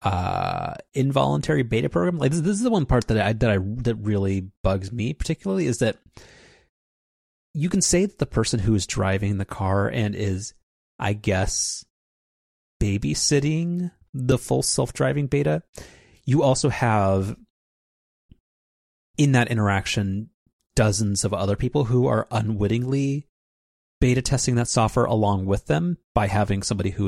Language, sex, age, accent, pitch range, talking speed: English, male, 30-49, American, 95-120 Hz, 150 wpm